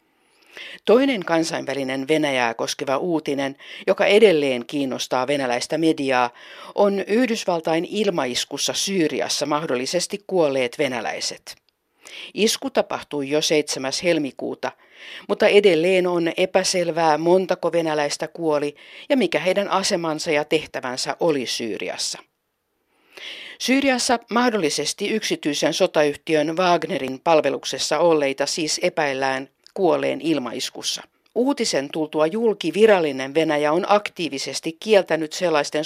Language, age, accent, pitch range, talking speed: Finnish, 50-69, native, 150-205 Hz, 95 wpm